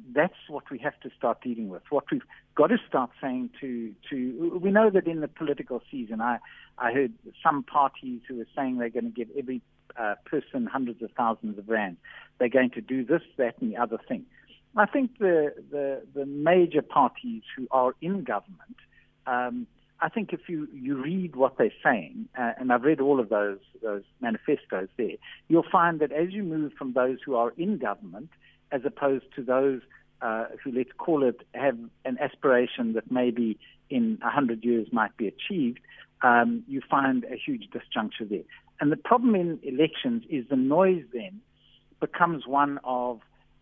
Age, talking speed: 60-79, 185 wpm